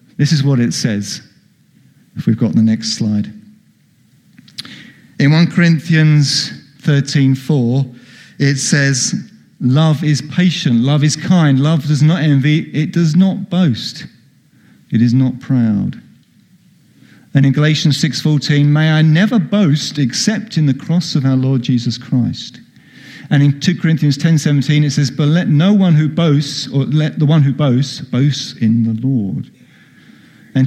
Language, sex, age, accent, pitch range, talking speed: English, male, 50-69, British, 130-180 Hz, 155 wpm